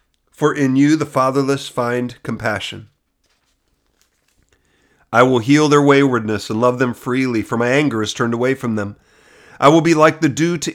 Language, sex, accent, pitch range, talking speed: English, male, American, 115-145 Hz, 175 wpm